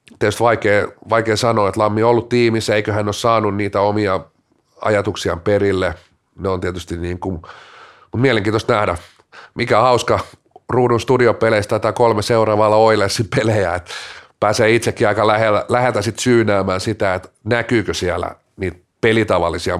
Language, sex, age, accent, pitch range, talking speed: Finnish, male, 30-49, native, 100-120 Hz, 140 wpm